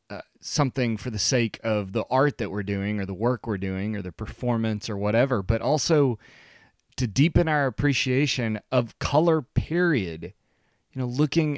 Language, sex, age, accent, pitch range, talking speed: English, male, 30-49, American, 100-130 Hz, 170 wpm